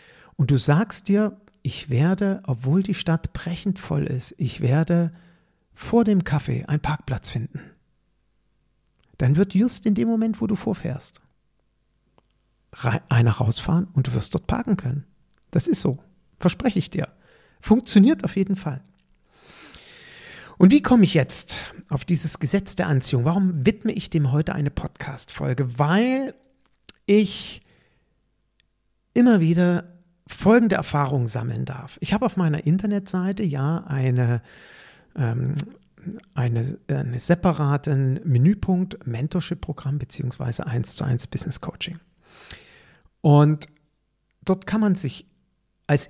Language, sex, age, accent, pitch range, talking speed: German, male, 50-69, German, 135-185 Hz, 125 wpm